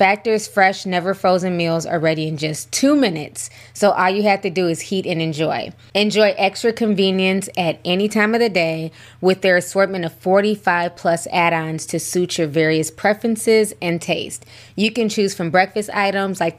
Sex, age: female, 20-39